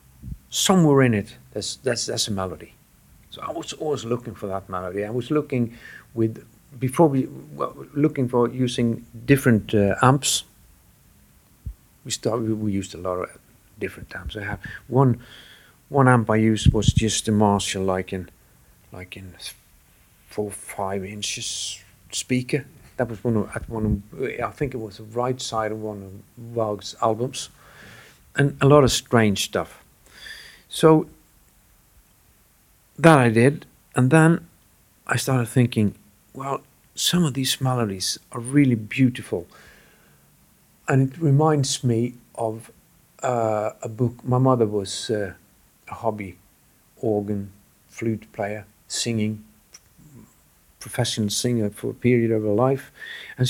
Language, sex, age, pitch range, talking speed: English, male, 50-69, 105-130 Hz, 140 wpm